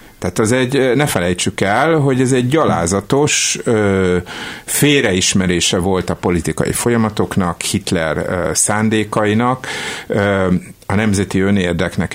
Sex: male